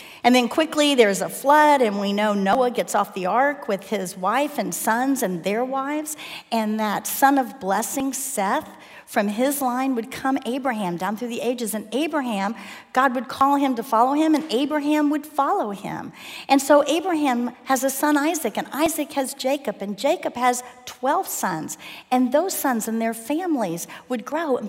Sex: female